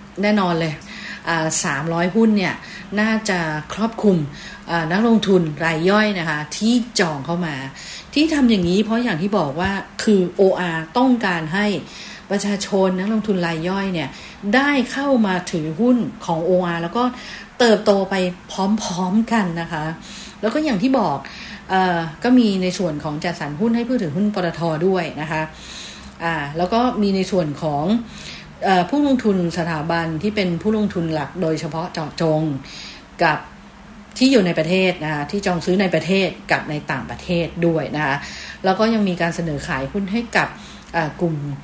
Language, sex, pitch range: English, female, 165-215 Hz